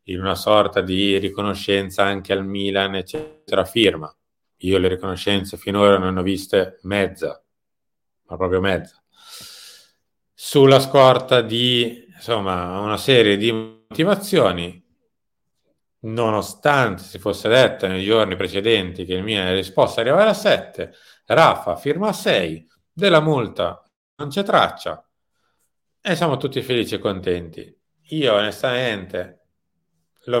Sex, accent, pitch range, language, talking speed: male, native, 95-115 Hz, Italian, 120 wpm